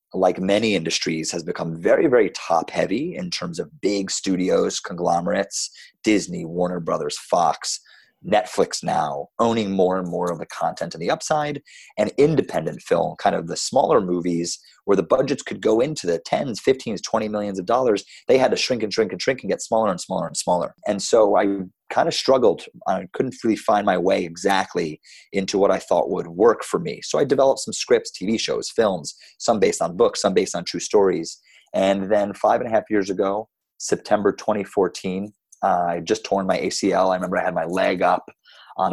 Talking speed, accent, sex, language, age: 195 wpm, American, male, English, 30-49